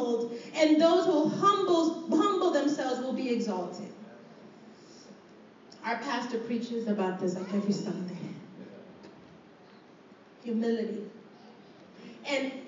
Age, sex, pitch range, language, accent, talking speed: 30-49, female, 275-390 Hz, English, American, 90 wpm